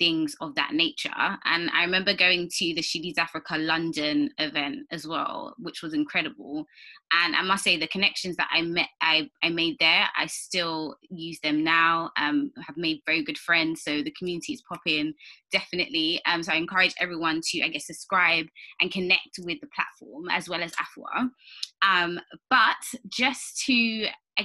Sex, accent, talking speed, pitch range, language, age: female, British, 175 wpm, 165-255 Hz, English, 20-39